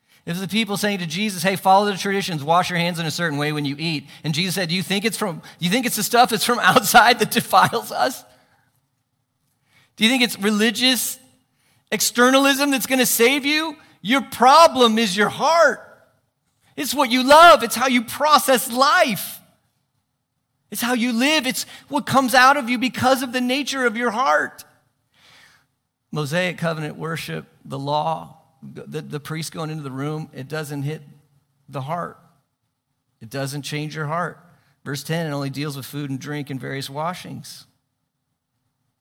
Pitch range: 130-205 Hz